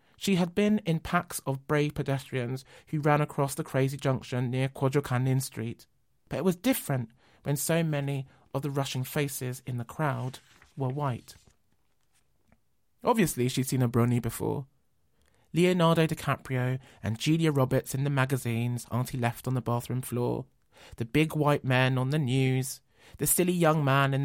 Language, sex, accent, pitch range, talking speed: English, male, British, 125-165 Hz, 160 wpm